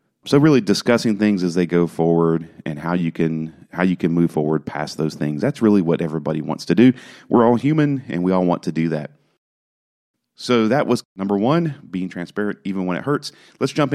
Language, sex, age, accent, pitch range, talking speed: English, male, 40-59, American, 90-125 Hz, 215 wpm